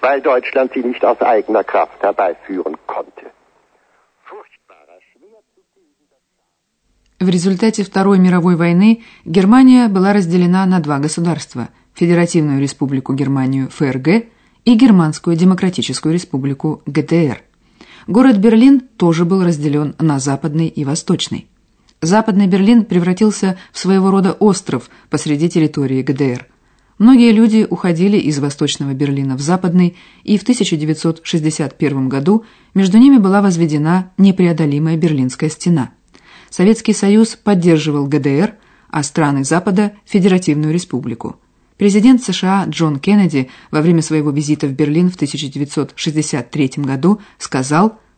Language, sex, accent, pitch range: Russian, female, native, 145-200 Hz